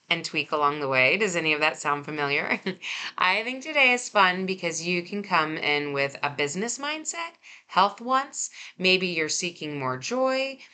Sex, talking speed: female, 180 wpm